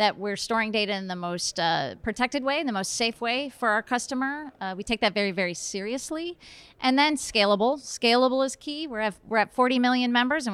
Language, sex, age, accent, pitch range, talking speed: English, female, 30-49, American, 195-245 Hz, 215 wpm